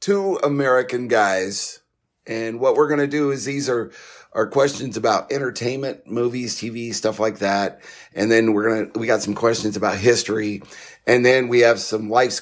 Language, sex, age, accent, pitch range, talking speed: English, male, 50-69, American, 110-145 Hz, 185 wpm